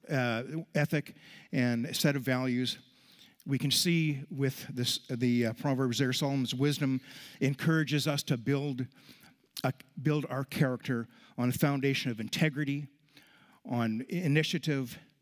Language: English